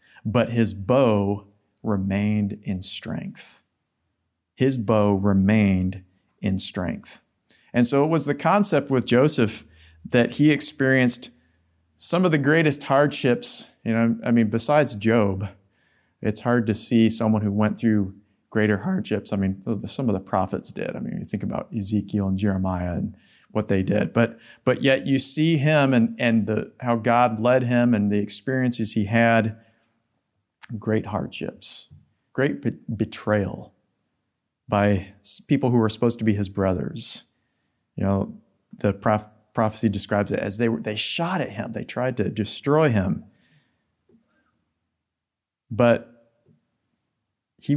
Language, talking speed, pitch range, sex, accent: English, 145 wpm, 100-120 Hz, male, American